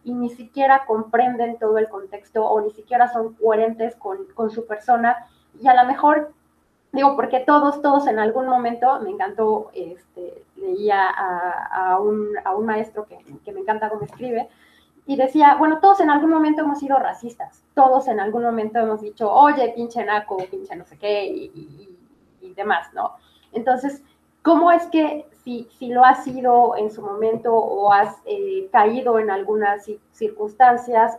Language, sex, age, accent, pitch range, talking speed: Spanish, female, 20-39, Mexican, 215-300 Hz, 175 wpm